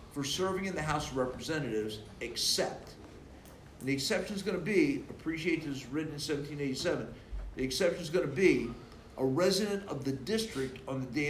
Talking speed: 180 wpm